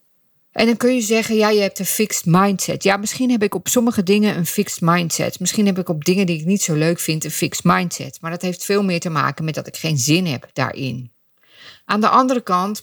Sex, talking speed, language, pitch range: female, 250 wpm, Dutch, 160-200 Hz